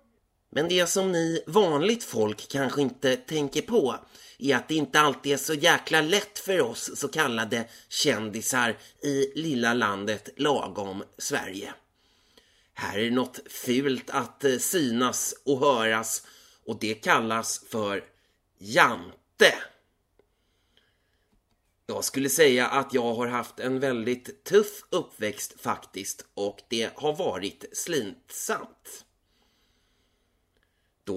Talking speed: 115 wpm